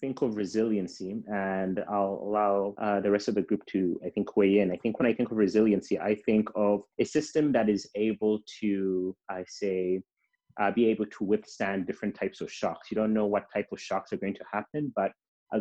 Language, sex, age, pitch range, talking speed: English, male, 30-49, 95-110 Hz, 220 wpm